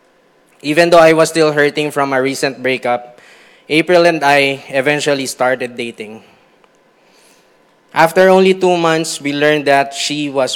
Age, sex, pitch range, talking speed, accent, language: 20-39, male, 135-160 Hz, 140 wpm, Filipino, English